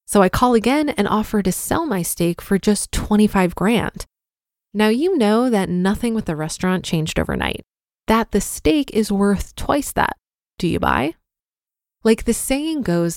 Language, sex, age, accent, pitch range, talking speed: English, female, 20-39, American, 180-240 Hz, 175 wpm